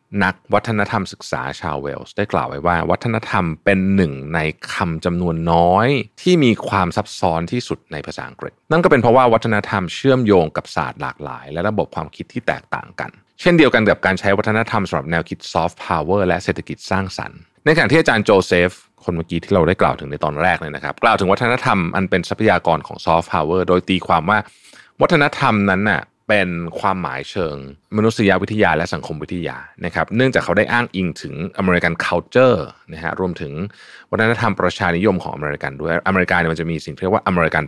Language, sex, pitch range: Thai, male, 85-105 Hz